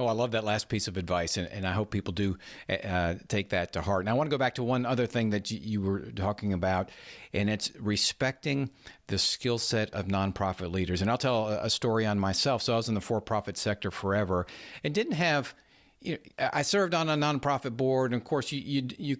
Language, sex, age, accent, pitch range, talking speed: English, male, 50-69, American, 100-130 Hz, 240 wpm